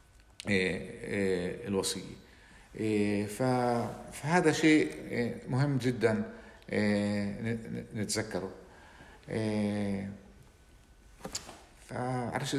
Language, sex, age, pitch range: Arabic, male, 50-69, 115-150 Hz